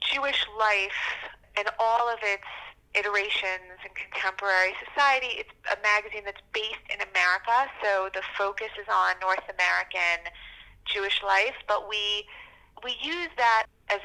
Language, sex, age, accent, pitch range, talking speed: English, female, 30-49, American, 185-220 Hz, 135 wpm